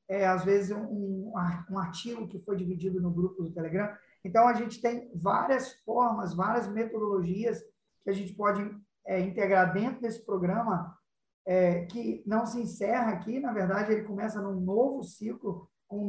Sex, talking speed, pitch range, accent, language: male, 170 wpm, 180-215 Hz, Brazilian, Portuguese